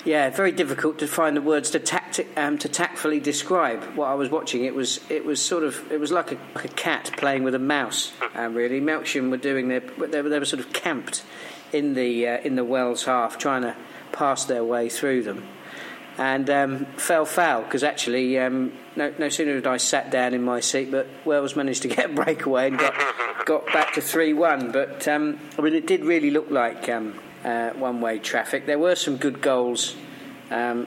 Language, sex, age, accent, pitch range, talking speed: English, male, 40-59, British, 125-155 Hz, 215 wpm